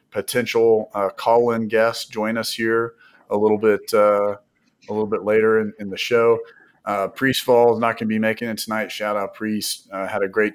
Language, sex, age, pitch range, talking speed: English, male, 30-49, 100-115 Hz, 205 wpm